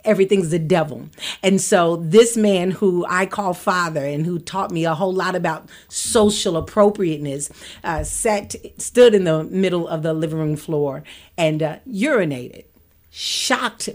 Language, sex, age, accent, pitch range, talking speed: English, female, 40-59, American, 175-220 Hz, 155 wpm